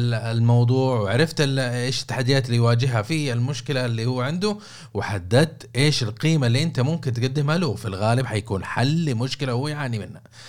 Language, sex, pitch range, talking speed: Arabic, male, 115-145 Hz, 155 wpm